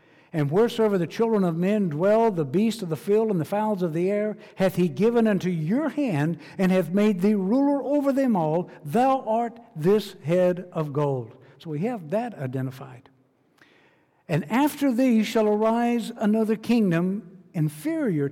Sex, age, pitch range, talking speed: male, 60-79, 155-210 Hz, 165 wpm